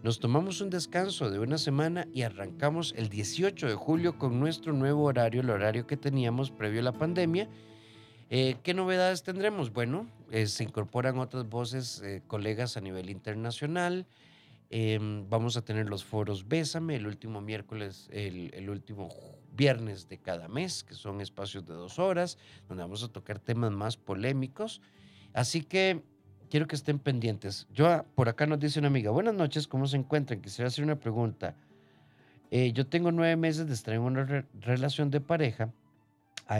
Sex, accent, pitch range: male, Mexican, 110-150 Hz